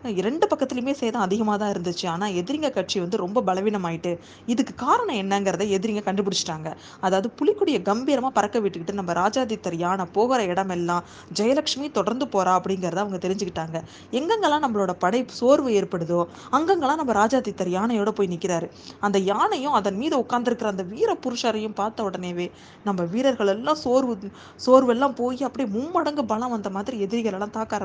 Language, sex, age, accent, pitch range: Tamil, female, 20-39, native, 185-250 Hz